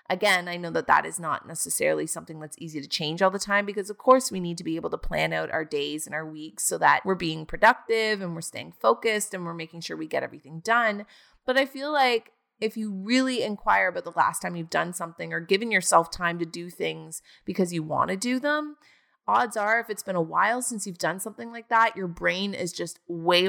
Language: English